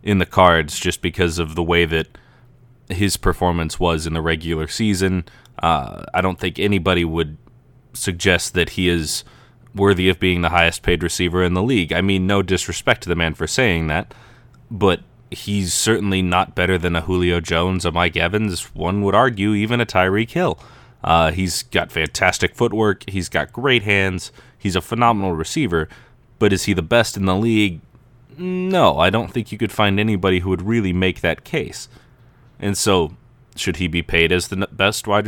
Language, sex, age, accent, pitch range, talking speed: English, male, 20-39, American, 90-120 Hz, 185 wpm